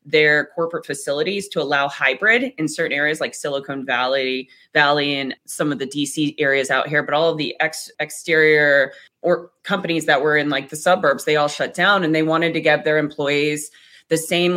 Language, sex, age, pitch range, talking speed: English, female, 20-39, 150-170 Hz, 200 wpm